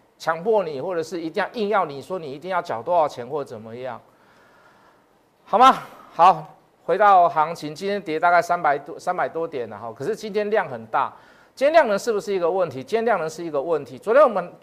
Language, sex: Chinese, male